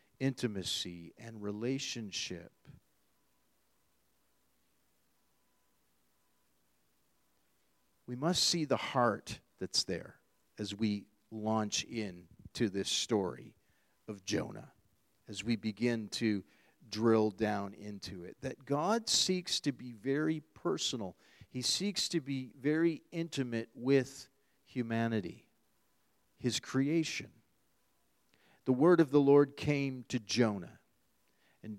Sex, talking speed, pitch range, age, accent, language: male, 100 wpm, 110-155 Hz, 40-59, American, English